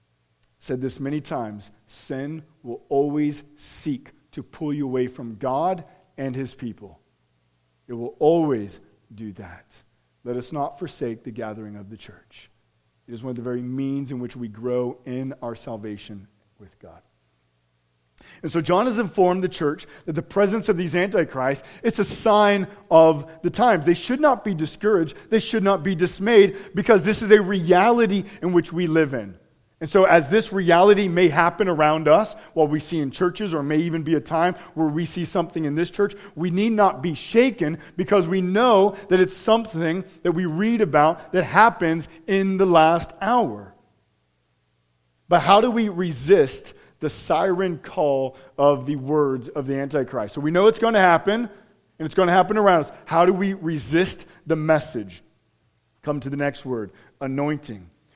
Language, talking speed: English, 180 wpm